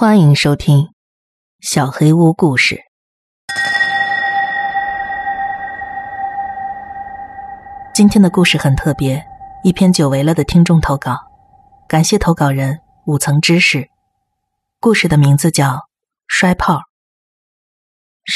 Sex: female